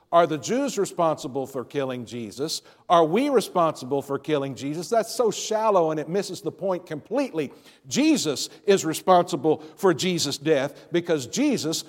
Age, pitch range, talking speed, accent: 60-79, 140-190 Hz, 150 wpm, American